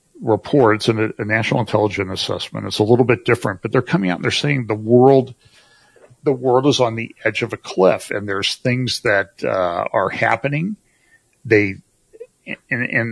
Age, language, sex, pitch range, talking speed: 60-79, English, male, 95-120 Hz, 180 wpm